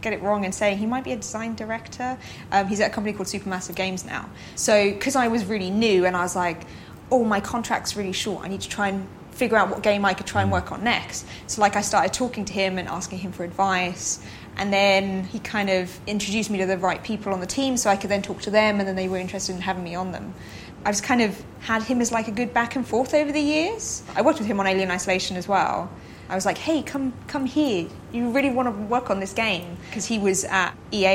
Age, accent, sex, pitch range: 20-39, British, female, 190-225 Hz